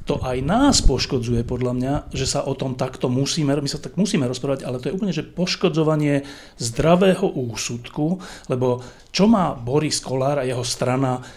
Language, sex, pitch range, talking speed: Slovak, male, 125-150 Hz, 175 wpm